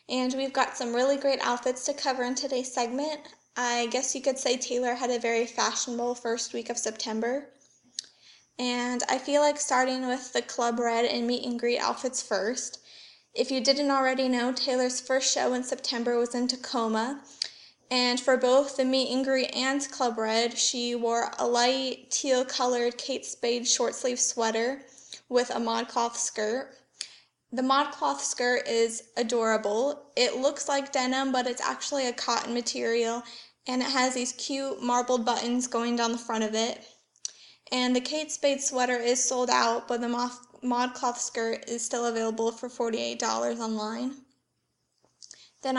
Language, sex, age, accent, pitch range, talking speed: English, female, 10-29, American, 240-265 Hz, 170 wpm